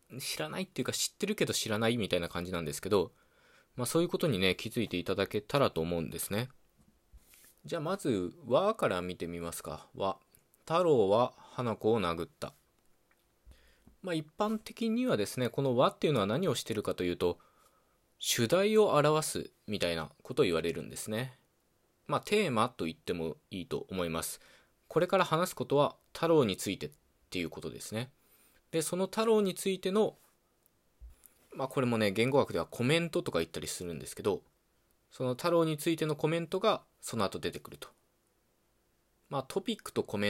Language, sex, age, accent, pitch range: Japanese, male, 20-39, native, 100-170 Hz